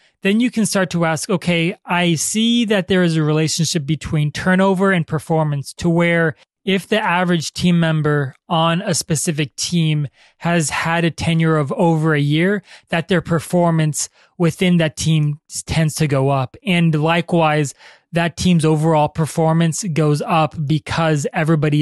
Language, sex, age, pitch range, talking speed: English, male, 20-39, 150-175 Hz, 155 wpm